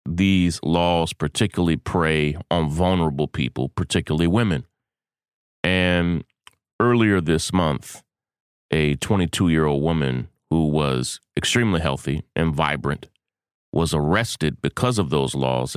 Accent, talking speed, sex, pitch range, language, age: American, 105 wpm, male, 70-90 Hz, English, 30-49